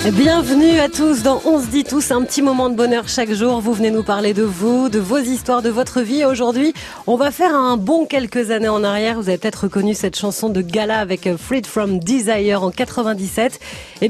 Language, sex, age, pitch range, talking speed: French, female, 30-49, 210-265 Hz, 230 wpm